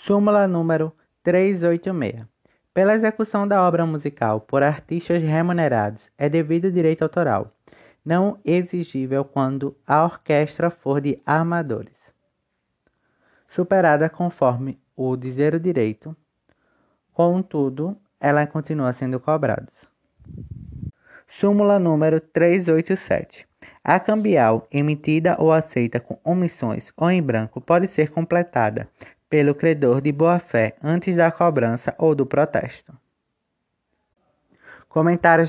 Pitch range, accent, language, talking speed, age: 140-175 Hz, Brazilian, Portuguese, 105 wpm, 20-39